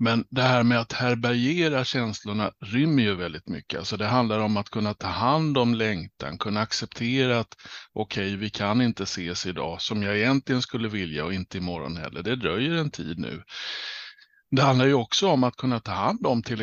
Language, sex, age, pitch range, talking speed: Swedish, male, 60-79, 100-125 Hz, 200 wpm